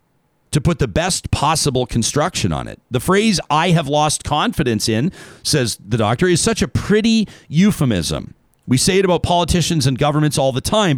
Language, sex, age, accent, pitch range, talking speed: English, male, 40-59, American, 125-165 Hz, 180 wpm